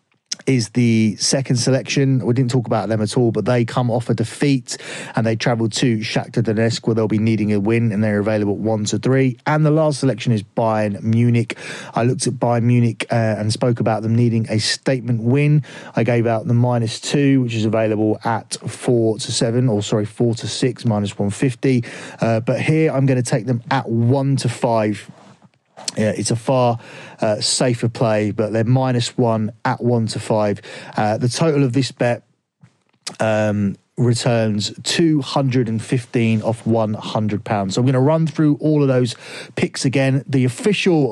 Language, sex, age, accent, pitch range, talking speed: English, male, 30-49, British, 110-135 Hz, 195 wpm